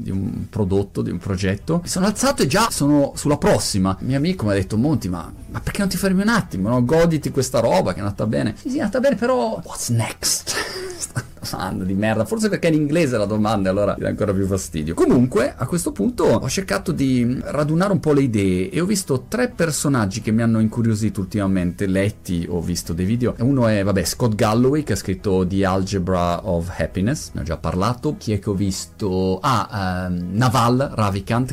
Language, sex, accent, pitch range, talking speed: Italian, male, native, 95-130 Hz, 215 wpm